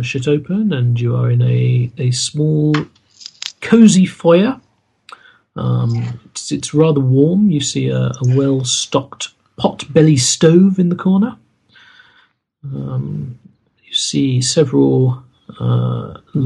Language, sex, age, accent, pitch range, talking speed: English, male, 40-59, British, 100-145 Hz, 120 wpm